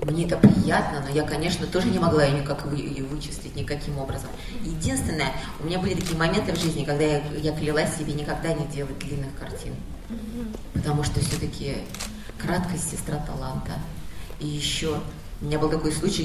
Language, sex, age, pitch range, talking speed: Russian, female, 30-49, 140-160 Hz, 165 wpm